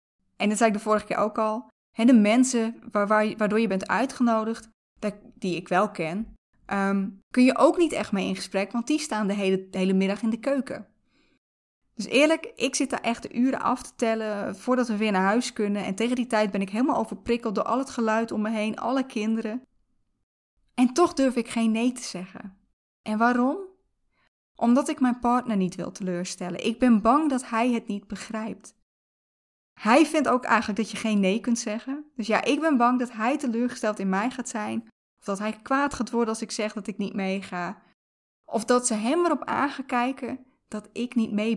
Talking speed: 205 wpm